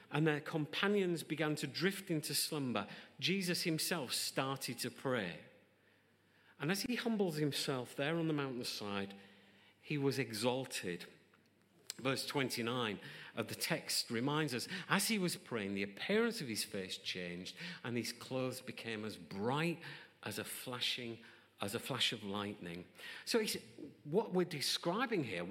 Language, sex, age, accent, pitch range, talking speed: English, male, 50-69, British, 125-195 Hz, 145 wpm